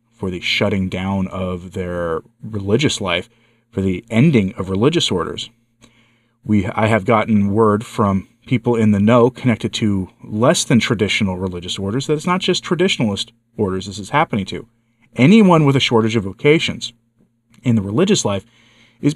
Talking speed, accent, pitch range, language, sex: 165 wpm, American, 95-115 Hz, English, male